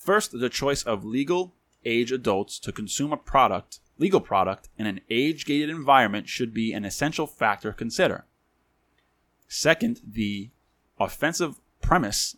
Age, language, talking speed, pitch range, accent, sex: 20-39, English, 135 wpm, 100-125 Hz, American, male